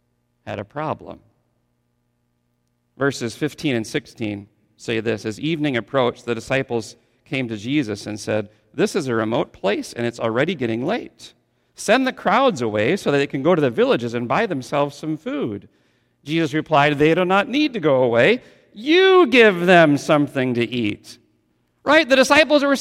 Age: 40-59